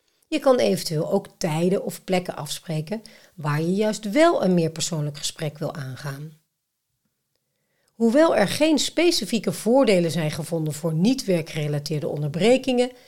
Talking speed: 135 wpm